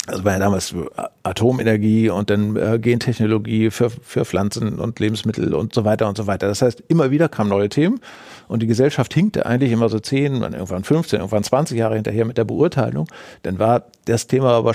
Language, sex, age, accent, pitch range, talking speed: German, male, 50-69, German, 105-135 Hz, 200 wpm